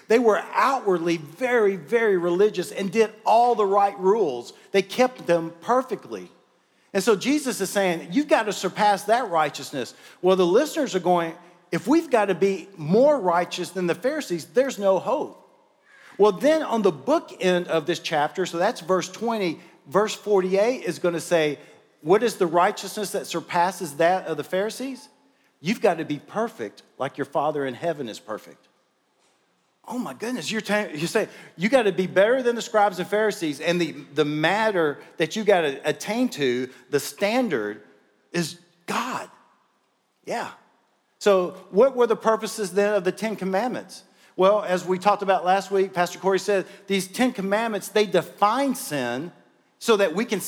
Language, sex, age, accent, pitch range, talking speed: English, male, 50-69, American, 170-215 Hz, 170 wpm